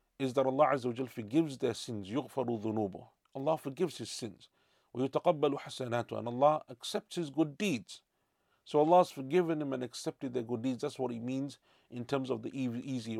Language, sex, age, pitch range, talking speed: English, male, 40-59, 115-135 Hz, 165 wpm